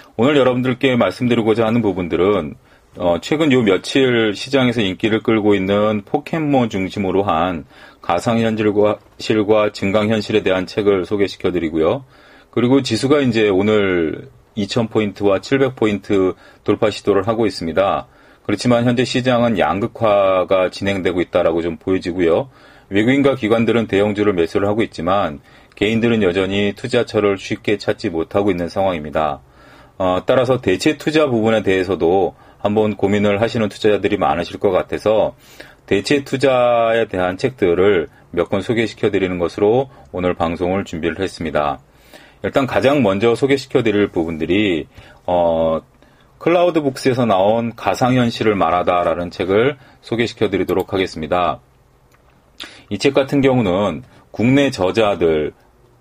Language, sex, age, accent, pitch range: Korean, male, 40-59, native, 95-120 Hz